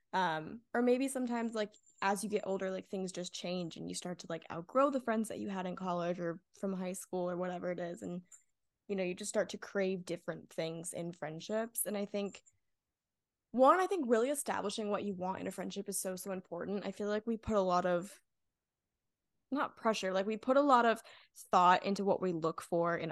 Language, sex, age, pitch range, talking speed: English, female, 10-29, 180-215 Hz, 225 wpm